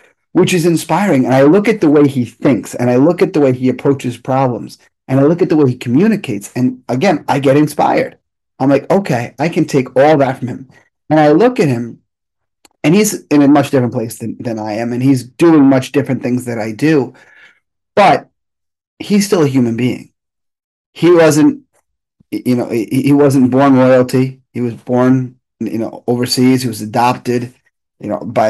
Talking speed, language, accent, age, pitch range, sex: 200 wpm, English, American, 30-49, 120-145 Hz, male